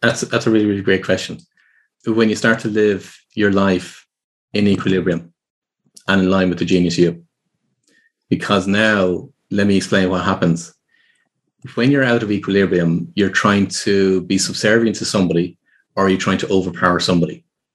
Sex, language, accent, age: male, English, Irish, 30-49